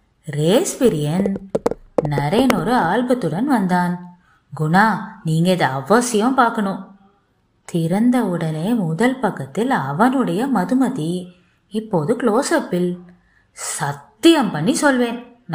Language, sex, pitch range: Tamil, female, 175-240 Hz